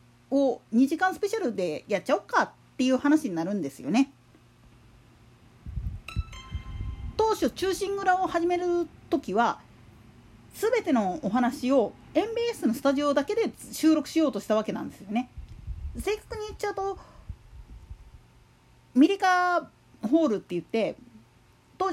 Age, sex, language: 40-59, female, Japanese